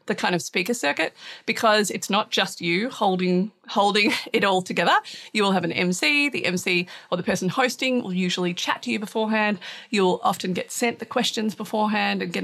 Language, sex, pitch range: English, female, 190-235 Hz